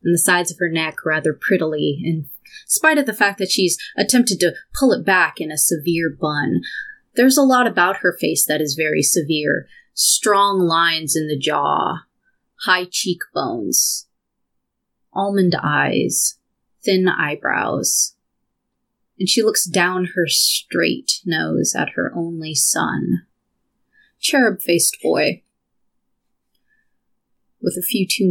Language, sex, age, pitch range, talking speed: English, female, 30-49, 170-235 Hz, 130 wpm